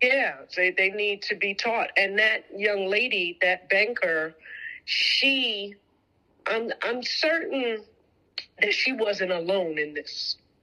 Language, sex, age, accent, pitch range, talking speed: English, female, 50-69, American, 175-240 Hz, 130 wpm